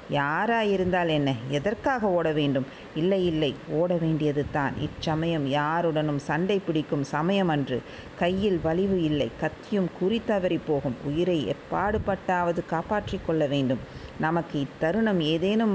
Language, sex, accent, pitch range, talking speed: Tamil, female, native, 155-195 Hz, 110 wpm